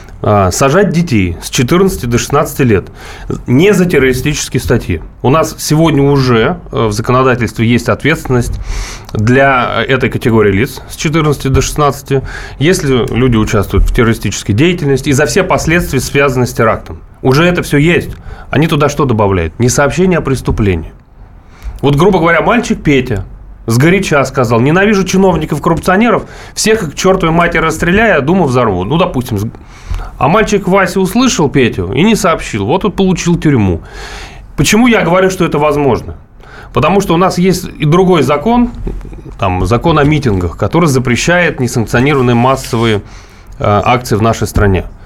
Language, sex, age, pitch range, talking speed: Russian, male, 30-49, 115-165 Hz, 145 wpm